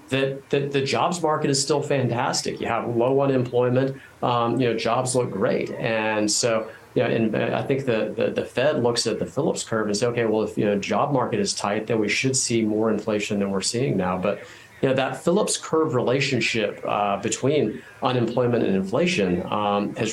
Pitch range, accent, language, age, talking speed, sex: 105-125 Hz, American, English, 40-59, 205 wpm, male